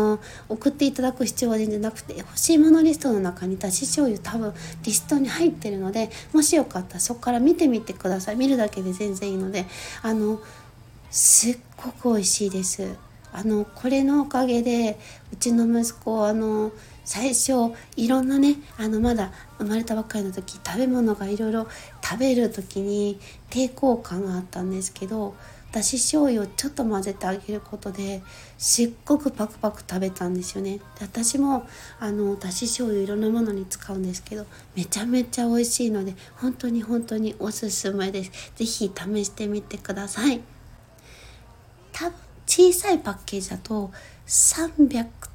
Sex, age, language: female, 60-79, Japanese